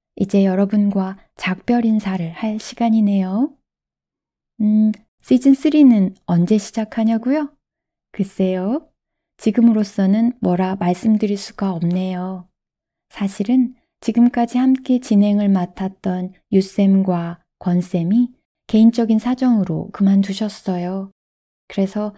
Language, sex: Korean, female